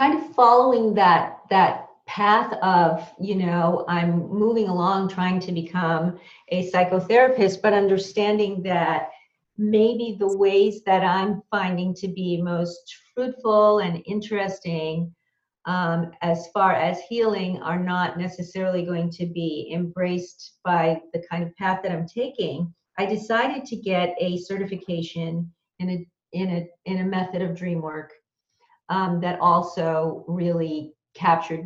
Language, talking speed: English, 140 wpm